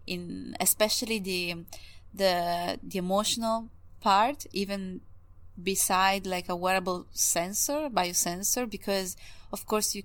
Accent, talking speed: Italian, 105 wpm